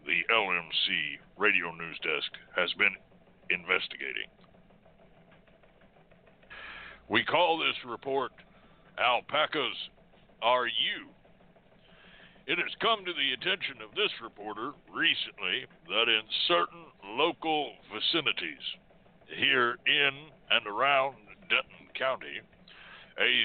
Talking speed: 95 wpm